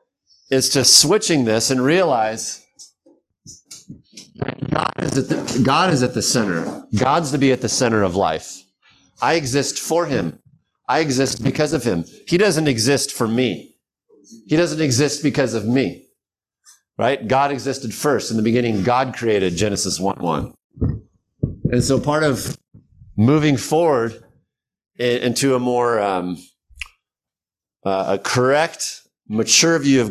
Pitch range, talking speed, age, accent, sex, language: 115-150 Hz, 140 wpm, 50-69, American, male, English